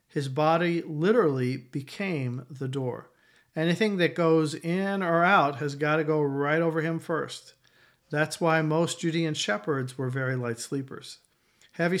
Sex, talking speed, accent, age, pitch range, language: male, 150 wpm, American, 50-69, 135-165 Hz, English